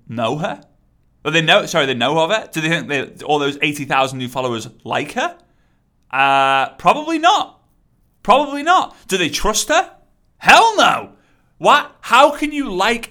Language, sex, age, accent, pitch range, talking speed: English, male, 30-49, British, 135-195 Hz, 175 wpm